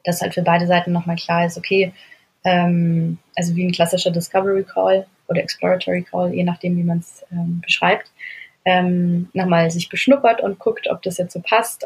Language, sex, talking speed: German, female, 180 wpm